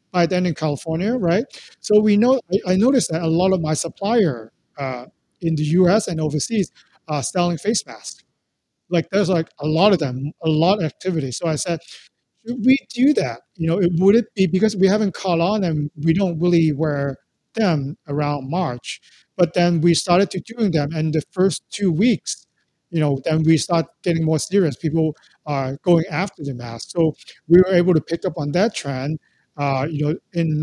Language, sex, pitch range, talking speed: English, male, 150-180 Hz, 200 wpm